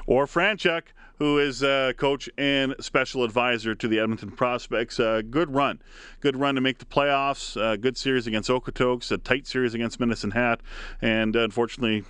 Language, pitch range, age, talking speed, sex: English, 105-130 Hz, 40-59, 175 wpm, male